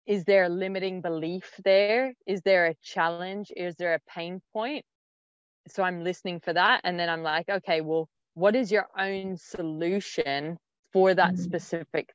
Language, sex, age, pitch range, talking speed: English, female, 20-39, 165-195 Hz, 170 wpm